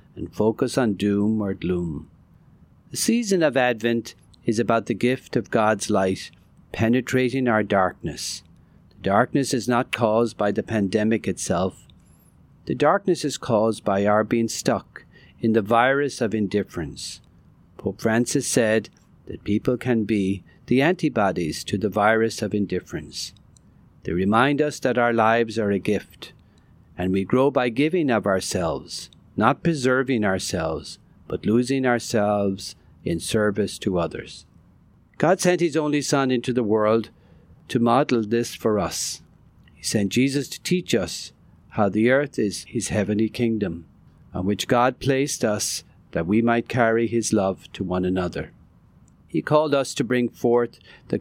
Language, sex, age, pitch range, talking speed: English, male, 50-69, 100-125 Hz, 150 wpm